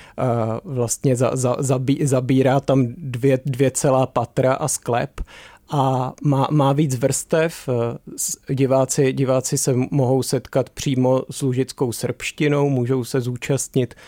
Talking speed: 110 wpm